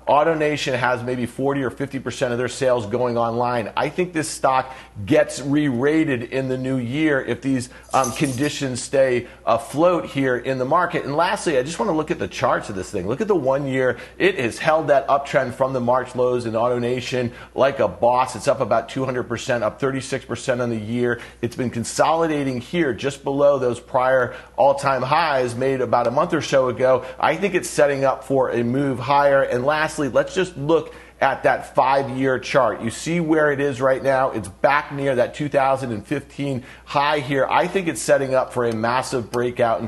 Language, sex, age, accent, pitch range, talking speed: English, male, 40-59, American, 120-145 Hz, 195 wpm